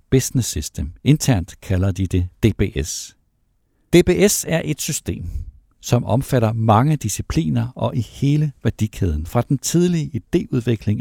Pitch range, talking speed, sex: 100-135 Hz, 125 wpm, male